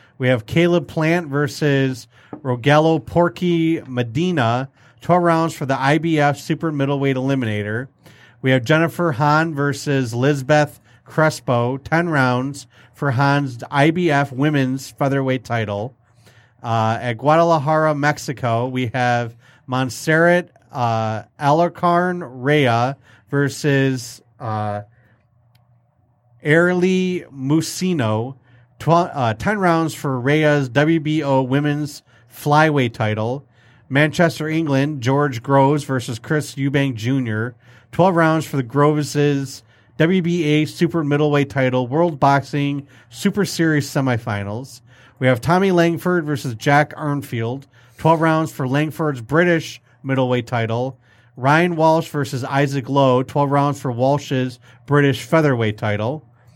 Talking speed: 105 wpm